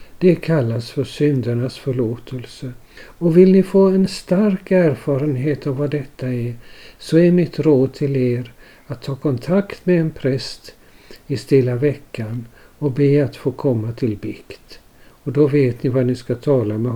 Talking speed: 165 wpm